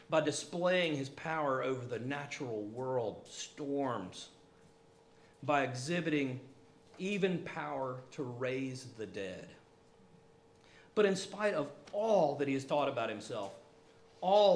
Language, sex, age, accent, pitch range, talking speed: English, male, 50-69, American, 130-170 Hz, 120 wpm